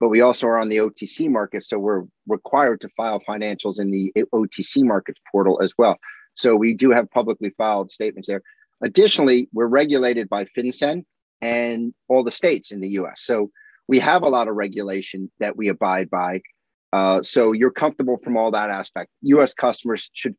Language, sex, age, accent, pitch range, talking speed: English, male, 40-59, American, 110-135 Hz, 185 wpm